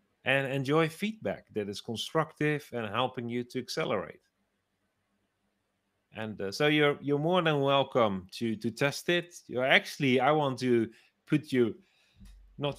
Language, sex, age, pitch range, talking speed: English, male, 30-49, 110-135 Hz, 145 wpm